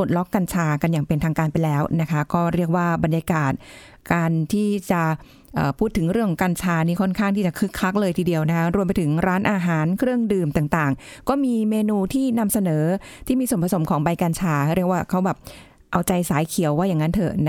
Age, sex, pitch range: 20-39, female, 170-220 Hz